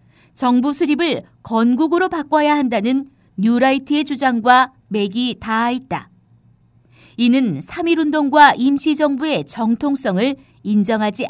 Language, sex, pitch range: Korean, female, 230-300 Hz